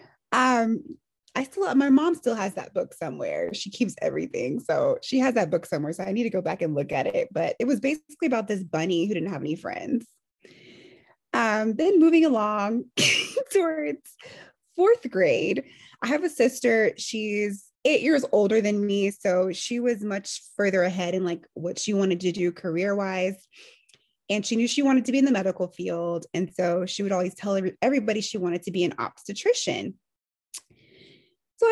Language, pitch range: English, 190-275 Hz